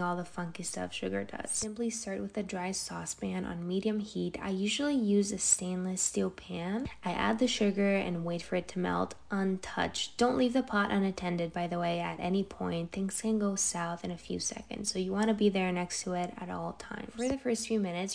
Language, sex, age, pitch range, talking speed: English, female, 10-29, 180-215 Hz, 230 wpm